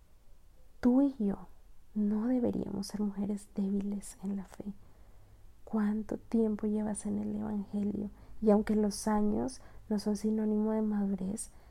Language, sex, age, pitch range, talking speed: Spanish, female, 30-49, 200-225 Hz, 135 wpm